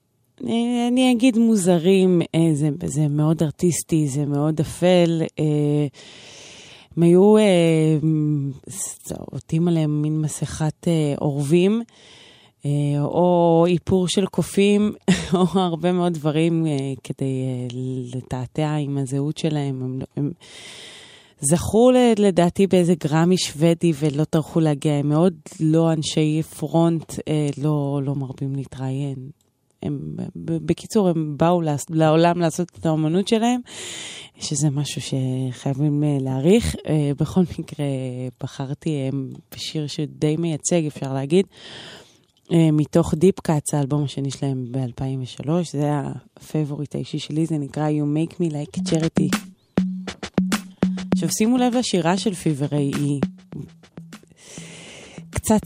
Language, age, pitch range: Hebrew, 20-39, 145-180 Hz